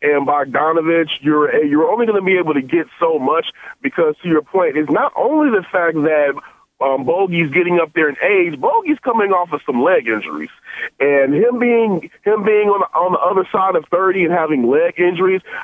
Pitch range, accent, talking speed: 150-195 Hz, American, 205 wpm